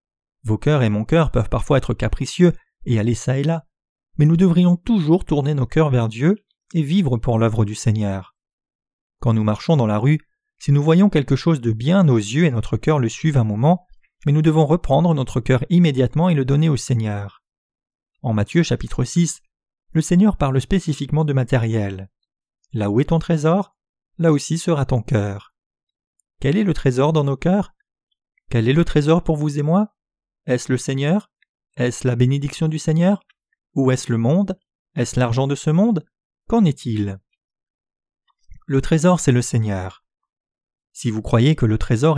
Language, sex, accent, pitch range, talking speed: French, male, French, 120-165 Hz, 180 wpm